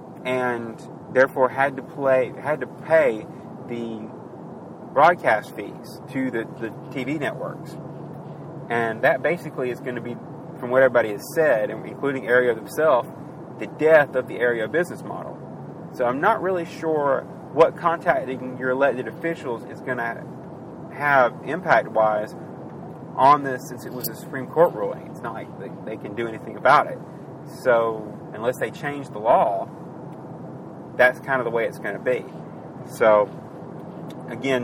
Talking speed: 155 wpm